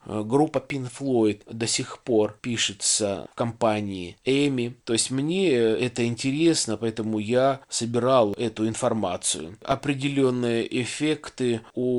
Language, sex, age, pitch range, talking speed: Russian, male, 20-39, 110-130 Hz, 115 wpm